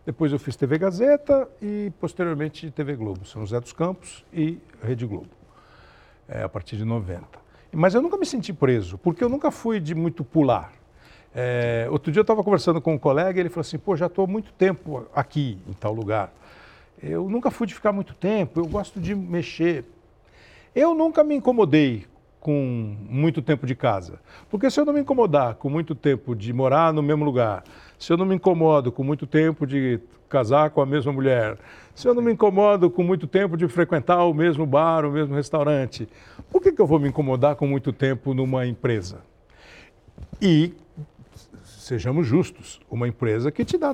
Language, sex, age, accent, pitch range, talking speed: Portuguese, male, 60-79, Brazilian, 120-190 Hz, 190 wpm